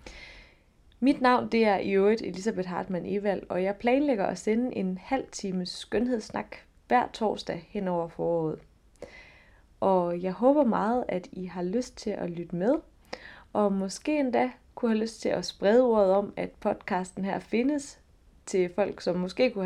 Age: 20-39